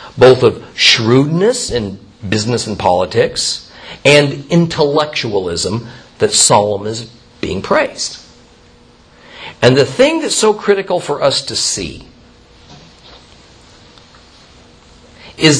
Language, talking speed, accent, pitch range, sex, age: English, 95 wpm, American, 105-160 Hz, male, 50-69